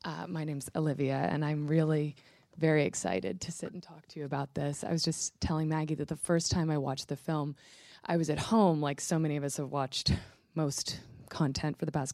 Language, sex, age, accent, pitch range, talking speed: English, female, 20-39, American, 140-175 Hz, 230 wpm